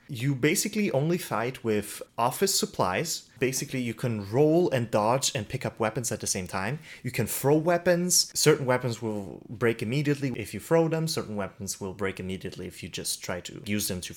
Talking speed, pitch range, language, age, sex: 200 wpm, 95-140 Hz, English, 30-49, male